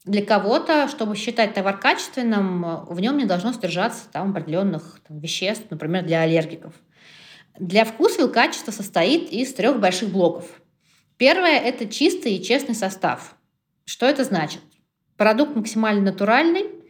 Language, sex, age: Russian, female, 20-39